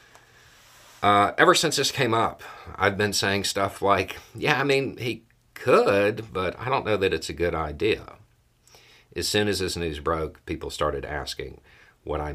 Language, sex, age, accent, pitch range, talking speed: English, male, 50-69, American, 85-115 Hz, 170 wpm